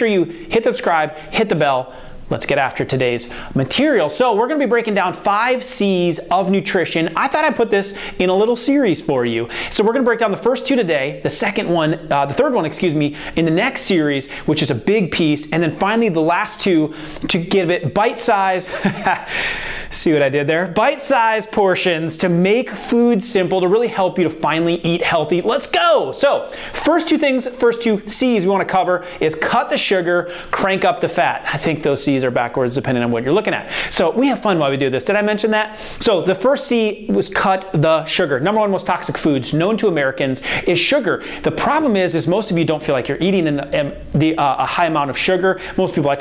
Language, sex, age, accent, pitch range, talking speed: English, male, 30-49, American, 165-225 Hz, 225 wpm